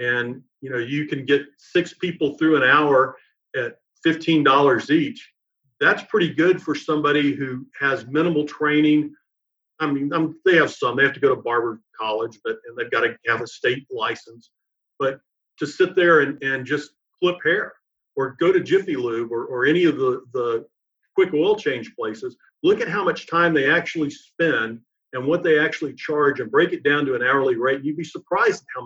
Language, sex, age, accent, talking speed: English, male, 50-69, American, 200 wpm